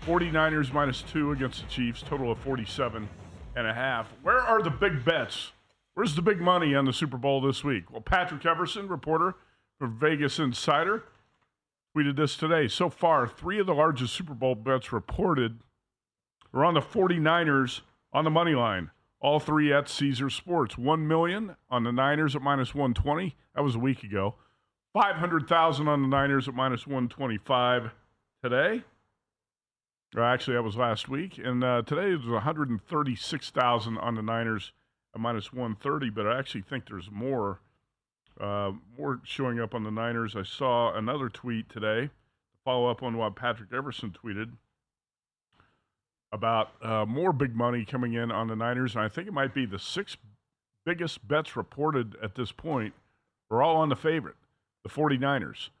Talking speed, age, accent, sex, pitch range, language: 165 wpm, 40-59, American, male, 115-150 Hz, English